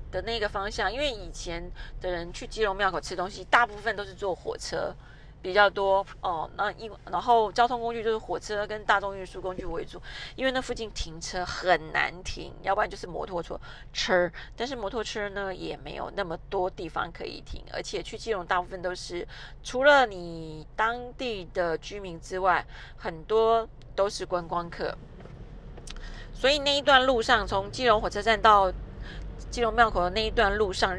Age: 30-49